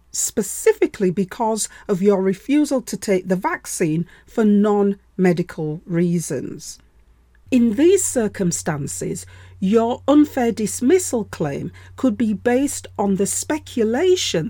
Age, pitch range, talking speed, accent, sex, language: 40-59, 180-280 Hz, 105 wpm, British, female, English